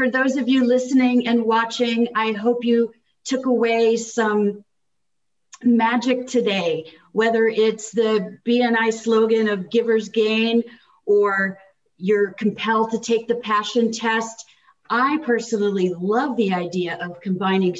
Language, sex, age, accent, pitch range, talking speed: English, female, 40-59, American, 195-235 Hz, 130 wpm